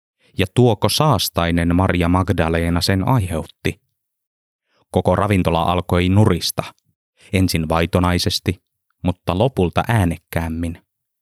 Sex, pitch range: male, 90-115 Hz